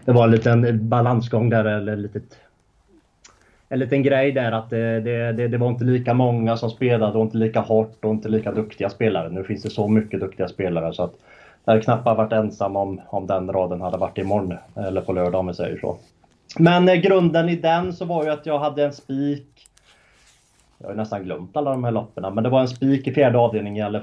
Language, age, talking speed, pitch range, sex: Swedish, 30-49, 230 wpm, 100-120 Hz, male